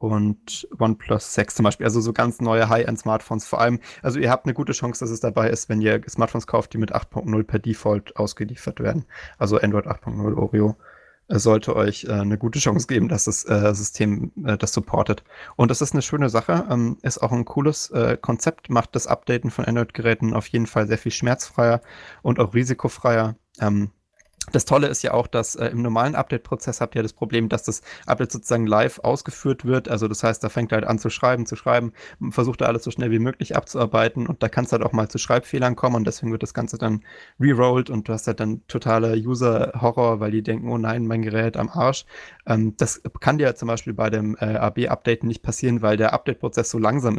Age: 20-39